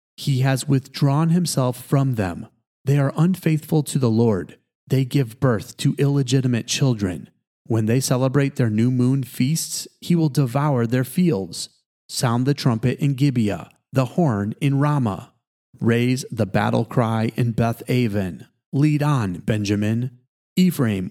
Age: 30-49